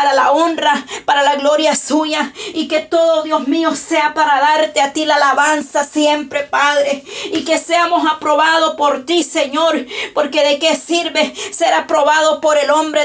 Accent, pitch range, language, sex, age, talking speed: American, 280-310 Hz, Spanish, female, 40-59, 170 wpm